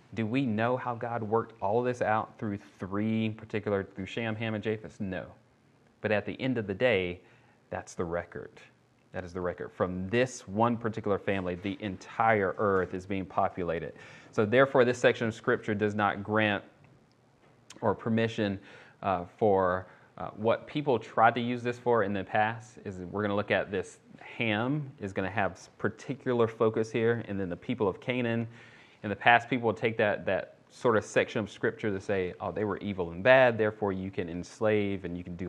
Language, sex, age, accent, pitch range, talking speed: English, male, 30-49, American, 95-120 Hz, 200 wpm